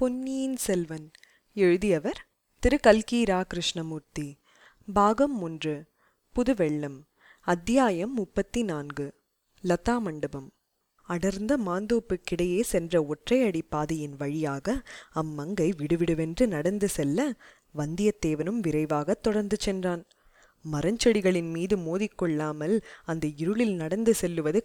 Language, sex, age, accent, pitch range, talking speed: Tamil, female, 20-39, native, 160-220 Hz, 85 wpm